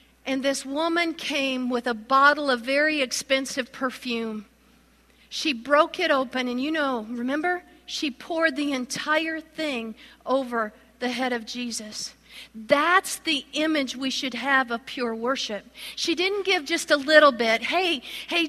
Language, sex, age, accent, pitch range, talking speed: English, female, 50-69, American, 230-285 Hz, 155 wpm